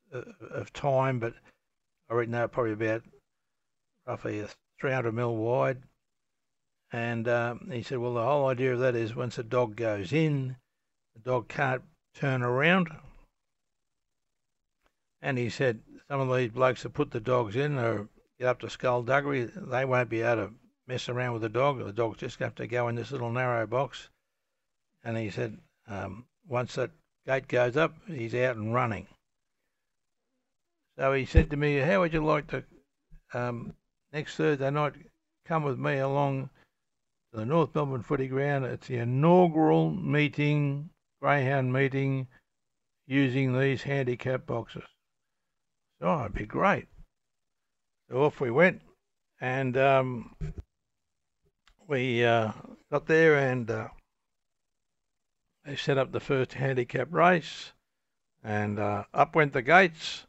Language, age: English, 60-79